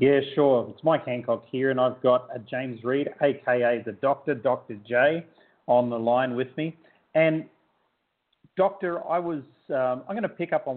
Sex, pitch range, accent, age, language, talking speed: male, 120-140 Hz, Australian, 40-59, English, 180 wpm